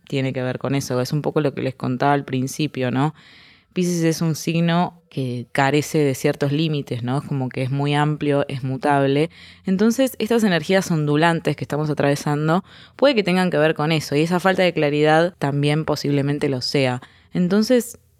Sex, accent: female, Argentinian